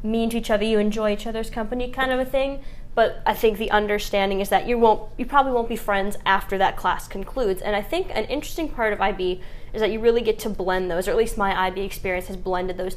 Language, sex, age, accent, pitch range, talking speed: English, female, 10-29, American, 195-235 Hz, 255 wpm